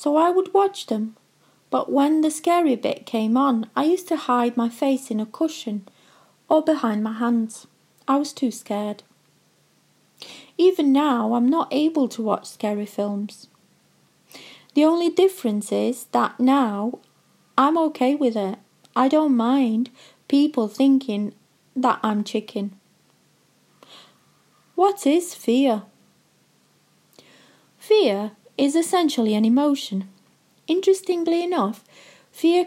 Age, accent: 30-49, British